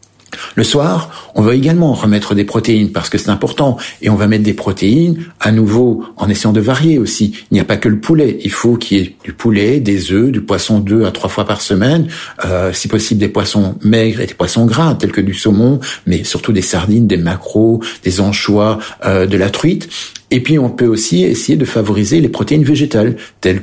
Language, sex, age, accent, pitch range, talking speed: French, male, 60-79, French, 105-125 Hz, 220 wpm